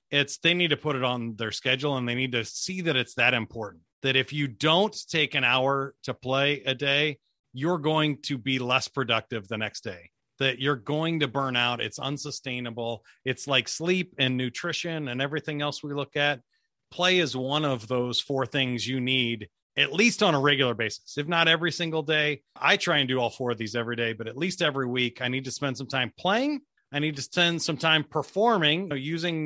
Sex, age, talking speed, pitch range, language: male, 30-49, 225 wpm, 125-155 Hz, English